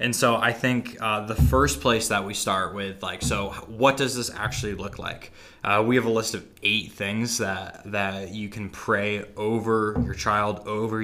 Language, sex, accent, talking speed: English, male, American, 200 wpm